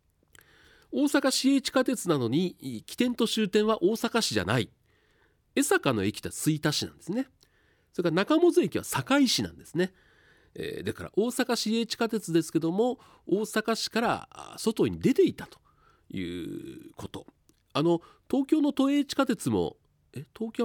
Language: Japanese